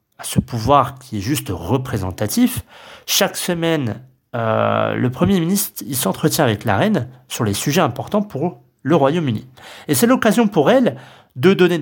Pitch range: 120-170 Hz